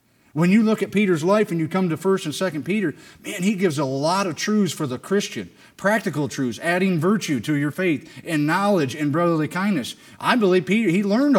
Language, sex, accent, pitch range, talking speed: English, male, American, 145-195 Hz, 215 wpm